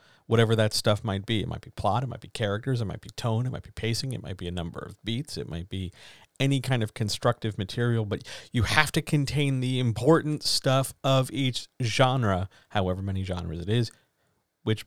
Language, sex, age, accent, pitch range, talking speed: English, male, 40-59, American, 100-125 Hz, 215 wpm